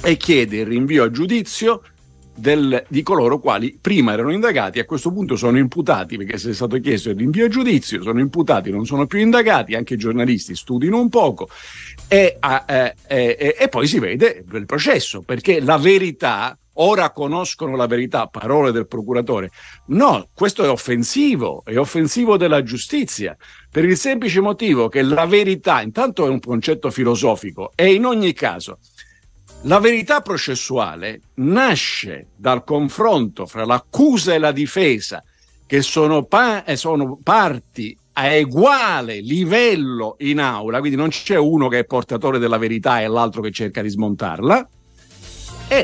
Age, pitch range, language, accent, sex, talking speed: 50-69, 120-175 Hz, Italian, native, male, 150 wpm